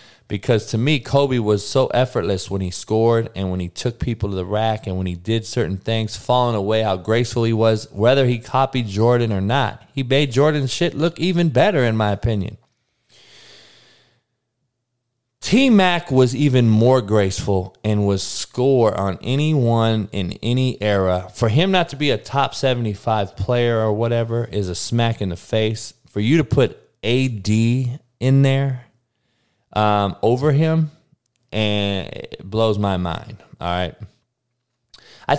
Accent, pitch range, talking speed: American, 105-135 Hz, 160 wpm